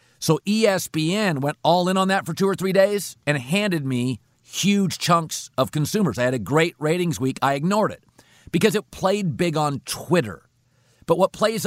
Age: 50-69